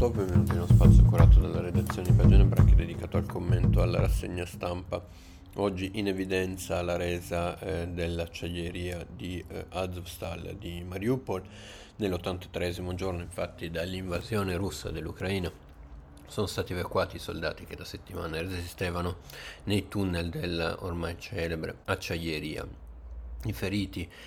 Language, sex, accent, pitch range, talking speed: Italian, male, native, 80-95 Hz, 120 wpm